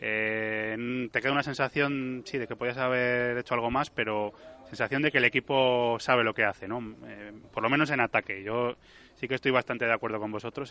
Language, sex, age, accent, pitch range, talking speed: Spanish, male, 20-39, Spanish, 110-130 Hz, 220 wpm